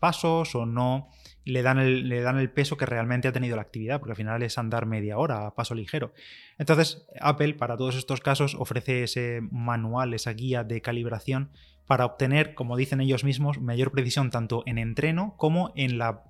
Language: Spanish